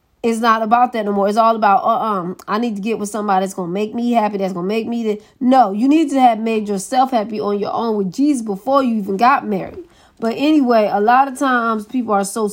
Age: 20-39